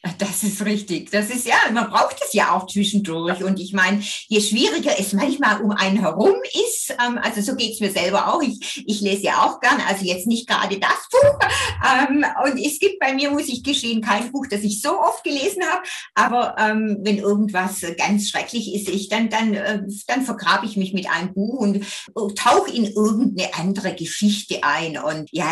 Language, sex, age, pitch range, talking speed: German, female, 50-69, 190-250 Hz, 200 wpm